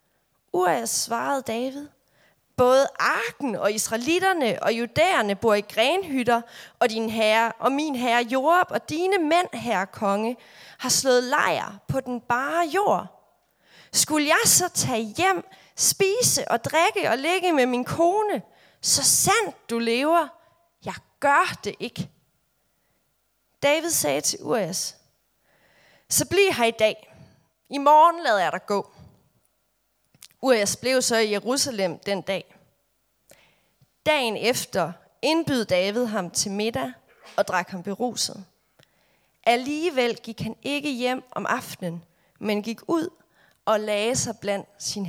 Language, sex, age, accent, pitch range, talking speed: Danish, female, 30-49, native, 210-285 Hz, 135 wpm